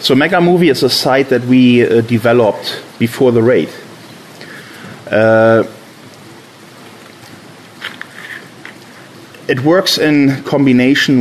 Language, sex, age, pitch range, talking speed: English, male, 30-49, 110-135 Hz, 90 wpm